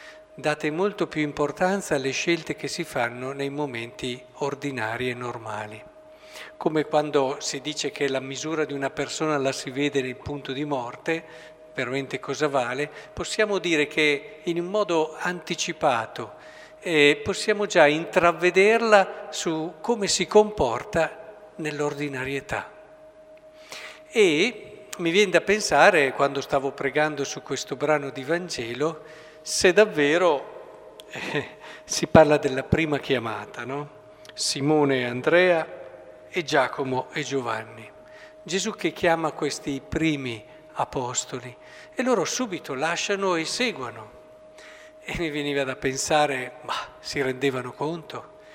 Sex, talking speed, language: male, 125 wpm, Italian